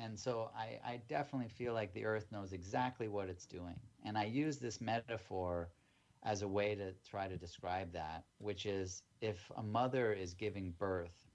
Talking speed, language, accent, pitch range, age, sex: 185 wpm, English, American, 95-125 Hz, 30-49, male